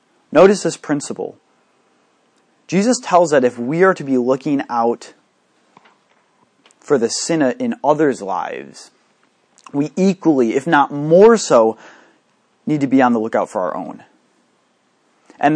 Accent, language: American, English